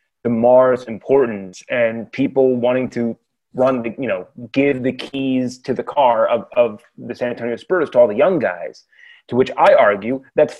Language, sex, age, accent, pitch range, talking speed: English, male, 30-49, American, 120-145 Hz, 180 wpm